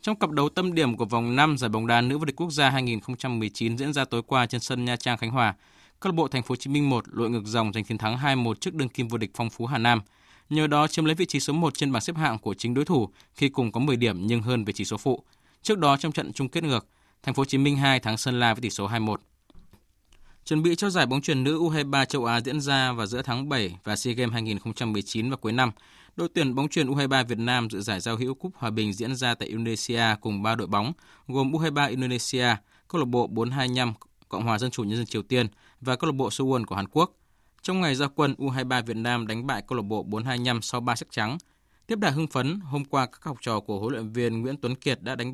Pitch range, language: 115-140 Hz, Vietnamese